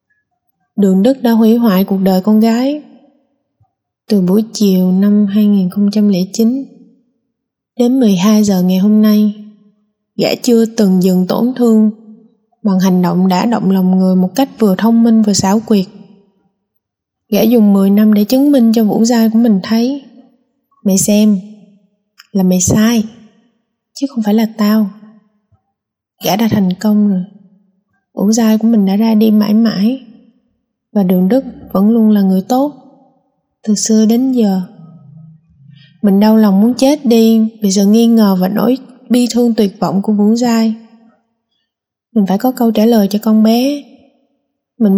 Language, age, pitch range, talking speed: Vietnamese, 20-39, 200-235 Hz, 160 wpm